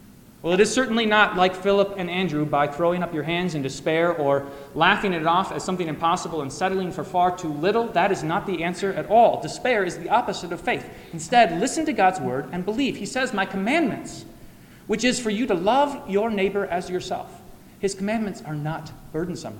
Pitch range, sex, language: 165-210 Hz, male, English